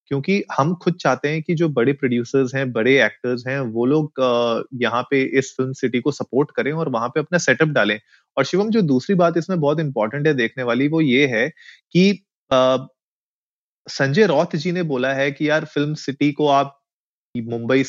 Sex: male